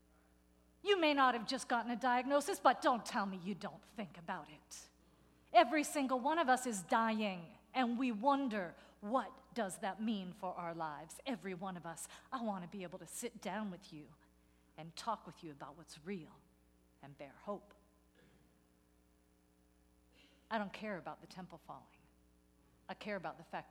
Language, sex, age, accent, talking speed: English, female, 50-69, American, 175 wpm